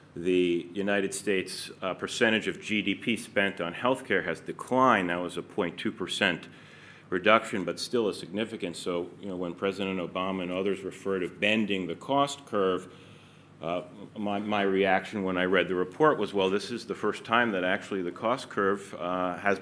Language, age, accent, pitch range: English, 40-59, American, 85-100 Hz